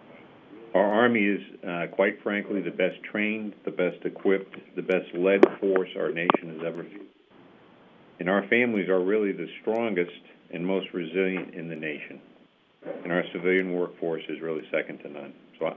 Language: English